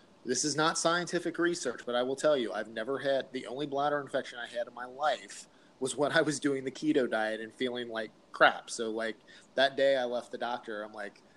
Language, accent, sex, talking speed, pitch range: English, American, male, 230 wpm, 115-135 Hz